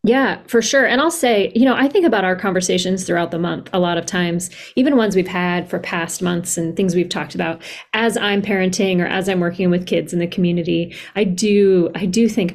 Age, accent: 30-49, American